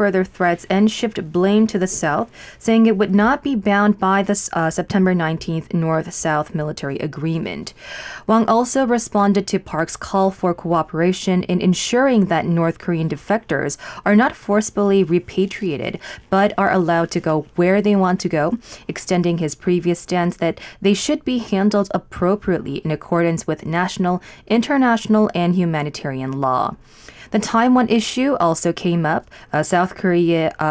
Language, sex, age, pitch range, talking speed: English, female, 20-39, 170-210 Hz, 150 wpm